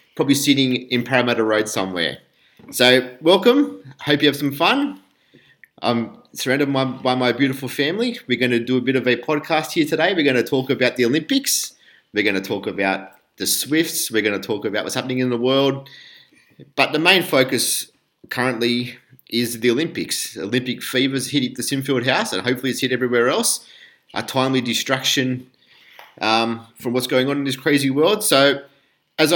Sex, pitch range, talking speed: male, 125-150 Hz, 175 wpm